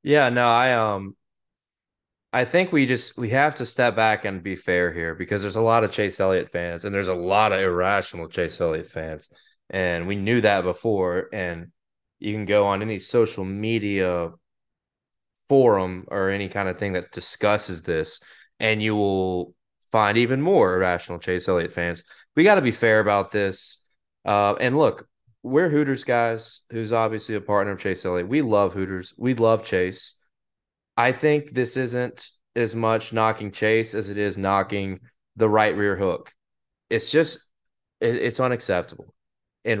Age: 20-39